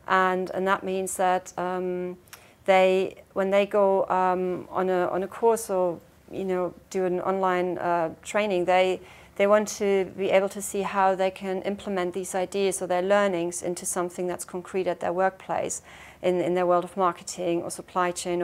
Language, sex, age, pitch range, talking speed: English, female, 40-59, 180-195 Hz, 185 wpm